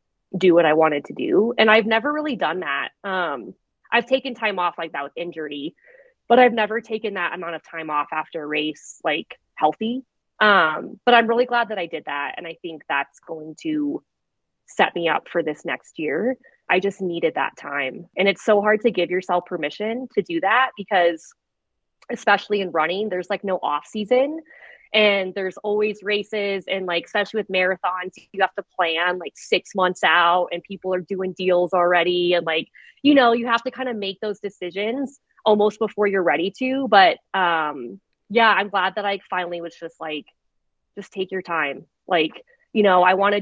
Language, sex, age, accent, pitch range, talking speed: English, female, 20-39, American, 170-215 Hz, 200 wpm